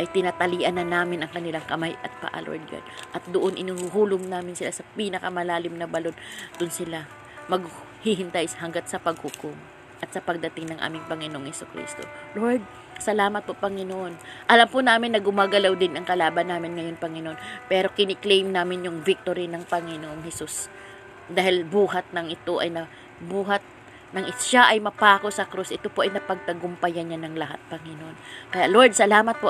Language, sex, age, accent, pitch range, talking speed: Filipino, female, 20-39, native, 165-195 Hz, 165 wpm